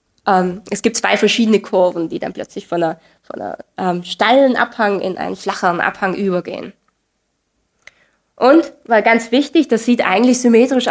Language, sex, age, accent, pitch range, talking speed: German, female, 20-39, German, 195-250 Hz, 155 wpm